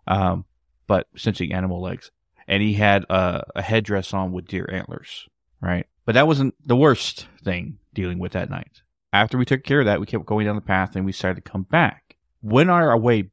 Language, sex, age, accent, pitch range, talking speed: English, male, 30-49, American, 95-120 Hz, 210 wpm